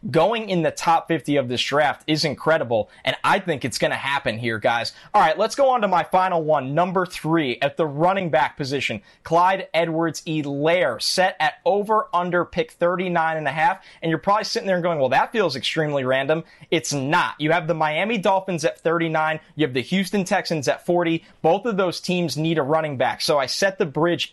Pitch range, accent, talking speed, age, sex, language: 155-195 Hz, American, 215 wpm, 20-39, male, English